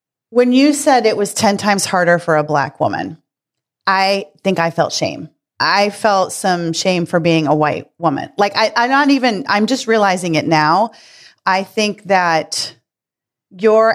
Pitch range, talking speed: 165-205 Hz, 170 wpm